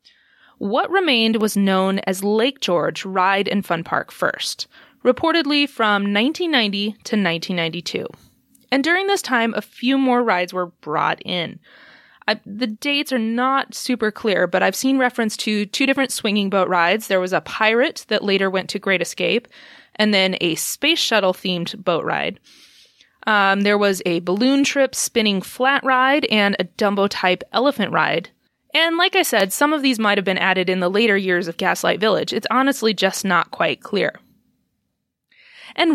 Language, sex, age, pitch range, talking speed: English, female, 20-39, 195-265 Hz, 165 wpm